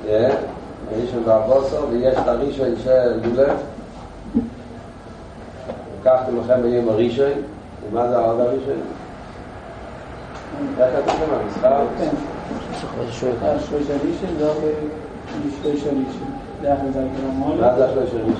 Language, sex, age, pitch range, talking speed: Hebrew, male, 40-59, 115-140 Hz, 80 wpm